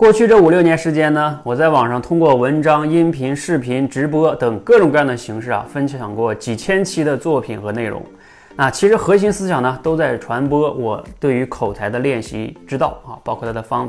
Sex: male